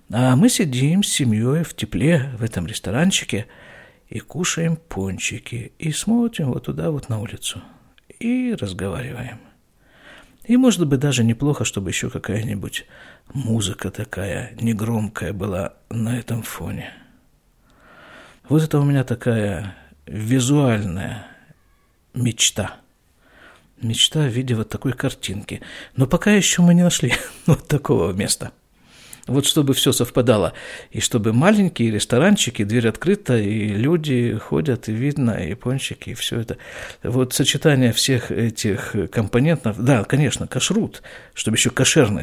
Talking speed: 130 wpm